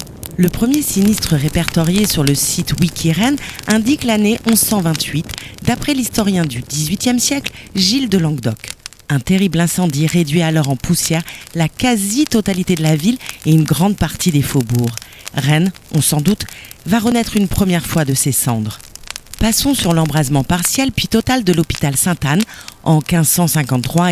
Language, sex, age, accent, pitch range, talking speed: French, female, 40-59, French, 145-195 Hz, 150 wpm